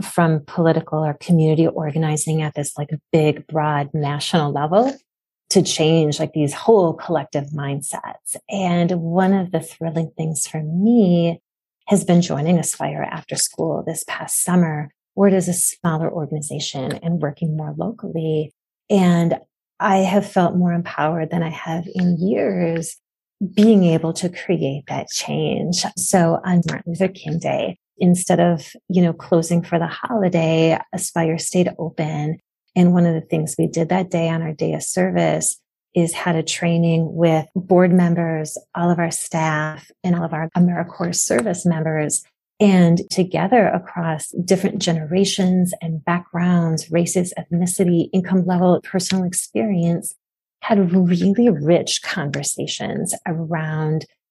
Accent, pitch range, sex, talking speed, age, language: American, 160-180 Hz, female, 145 wpm, 30-49, English